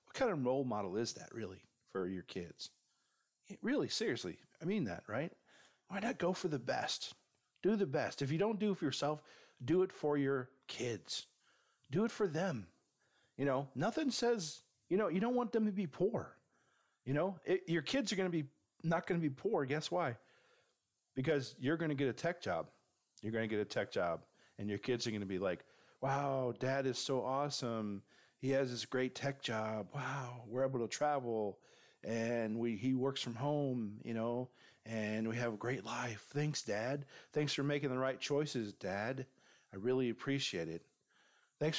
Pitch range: 110-145 Hz